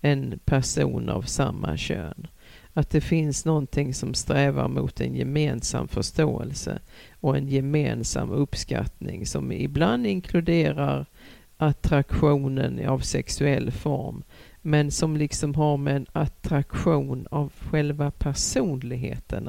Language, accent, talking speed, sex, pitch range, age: Swedish, native, 110 wpm, female, 130-150 Hz, 50-69